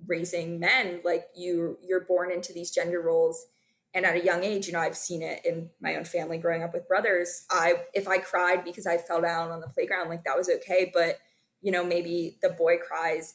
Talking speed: 225 wpm